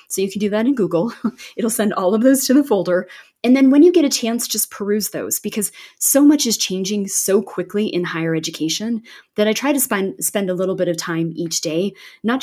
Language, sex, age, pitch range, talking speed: English, female, 20-39, 170-210 Hz, 235 wpm